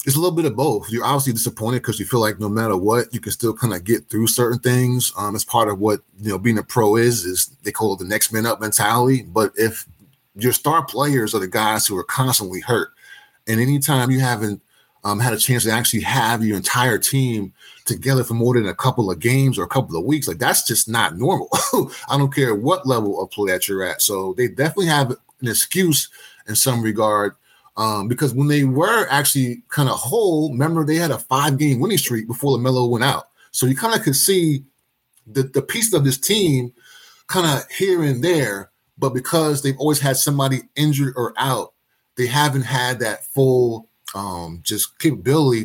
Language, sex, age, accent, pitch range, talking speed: English, male, 30-49, American, 115-140 Hz, 215 wpm